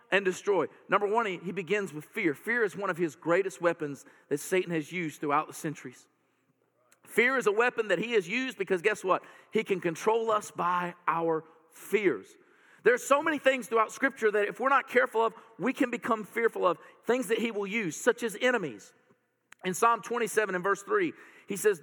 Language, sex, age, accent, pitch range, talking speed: English, male, 40-59, American, 175-245 Hz, 205 wpm